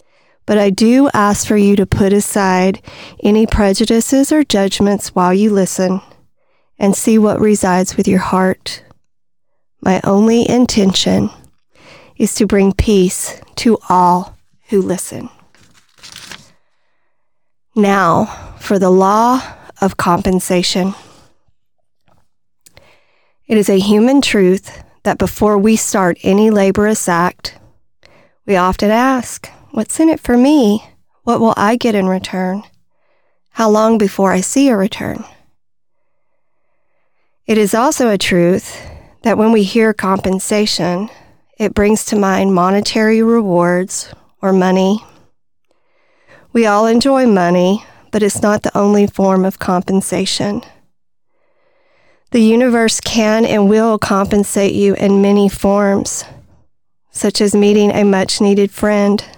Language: English